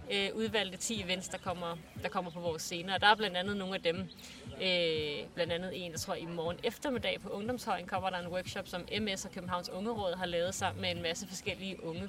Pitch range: 175-200 Hz